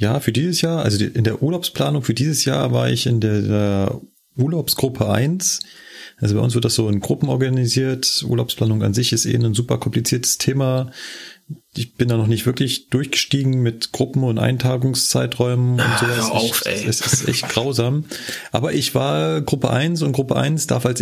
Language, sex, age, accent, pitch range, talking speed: German, male, 30-49, German, 115-150 Hz, 185 wpm